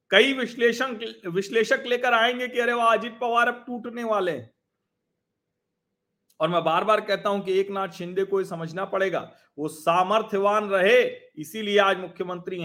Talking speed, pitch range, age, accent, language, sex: 150 wpm, 175-260 Hz, 40-59, native, Hindi, male